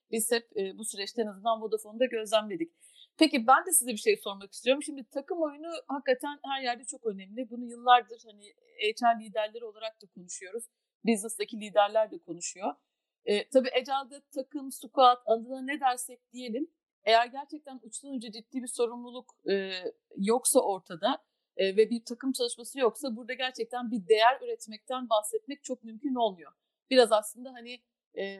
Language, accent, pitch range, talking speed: Turkish, native, 220-270 Hz, 155 wpm